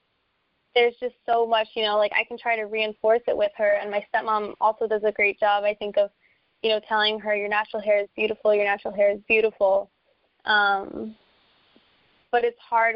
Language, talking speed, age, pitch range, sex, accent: English, 205 wpm, 20-39, 200-230 Hz, female, American